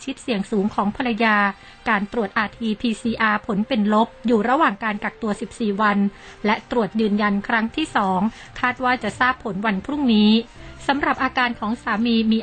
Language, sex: Thai, female